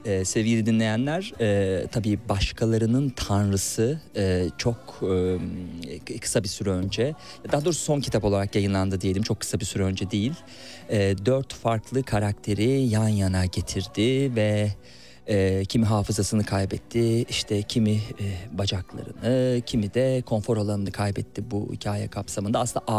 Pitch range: 100-120 Hz